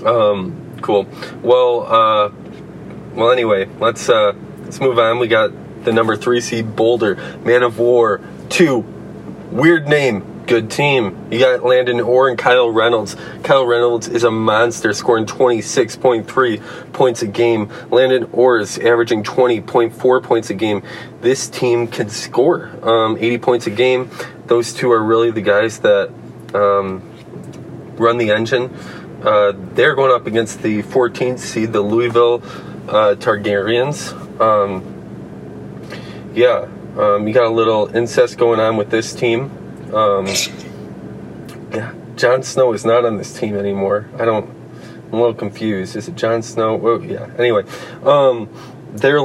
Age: 20-39